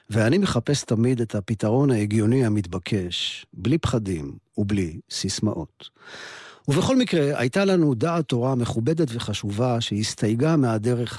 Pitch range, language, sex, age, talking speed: 105-135 Hz, Hebrew, male, 50-69, 115 wpm